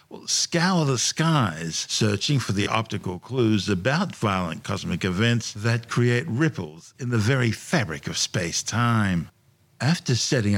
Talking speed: 135 wpm